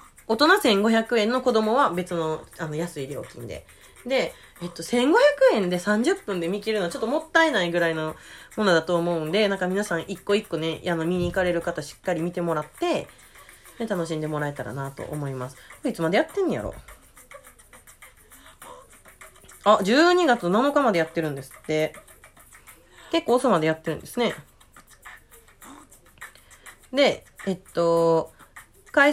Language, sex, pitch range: Japanese, female, 165-245 Hz